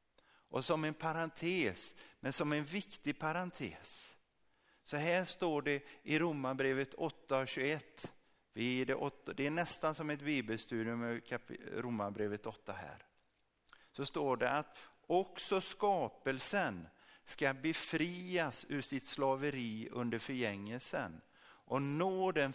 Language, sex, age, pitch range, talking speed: Swedish, male, 50-69, 115-160 Hz, 115 wpm